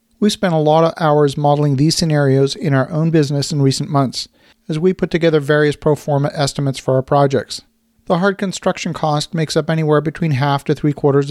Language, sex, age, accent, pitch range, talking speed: English, male, 40-59, American, 140-170 Hz, 205 wpm